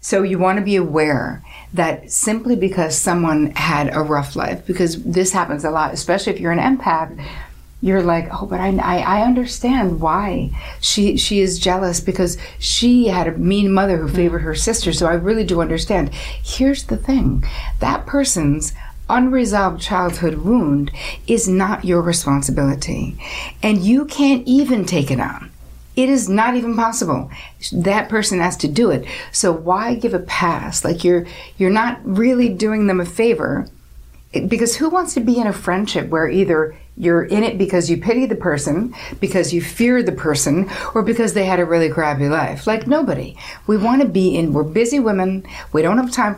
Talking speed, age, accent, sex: 180 wpm, 60-79, American, female